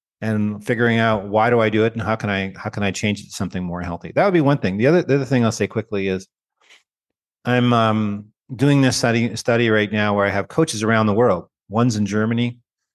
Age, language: 40-59, English